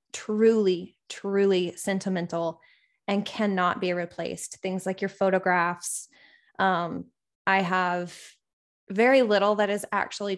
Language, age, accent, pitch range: English, 20-39, American, 180-205 Hz